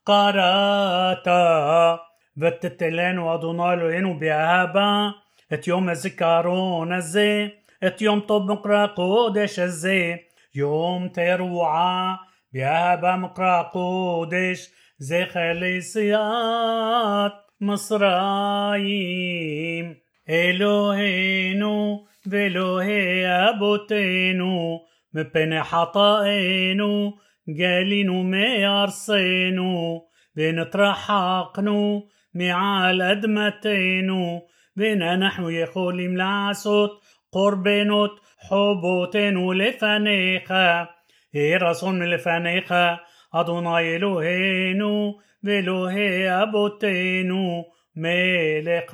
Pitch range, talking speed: 175-205 Hz, 55 wpm